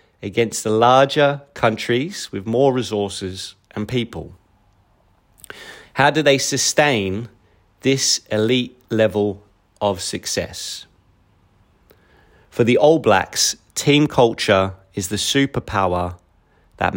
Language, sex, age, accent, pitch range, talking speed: English, male, 30-49, British, 100-130 Hz, 100 wpm